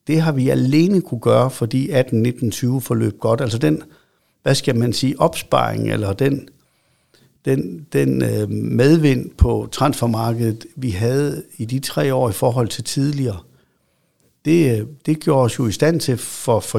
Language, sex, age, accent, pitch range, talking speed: Danish, male, 60-79, native, 110-135 Hz, 155 wpm